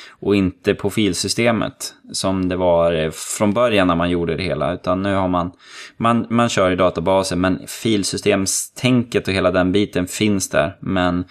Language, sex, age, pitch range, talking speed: Swedish, male, 20-39, 90-110 Hz, 170 wpm